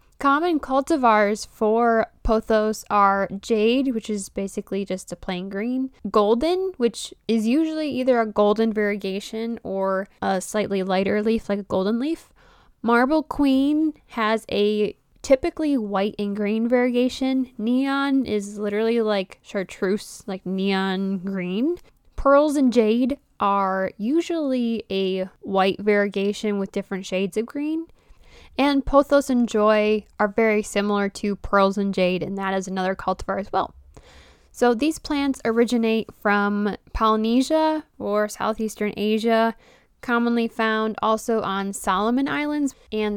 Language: English